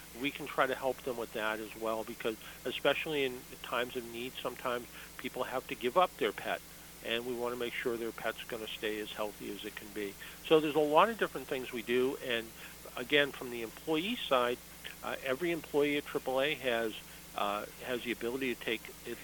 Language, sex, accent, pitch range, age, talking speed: English, male, American, 120-155 Hz, 50-69, 215 wpm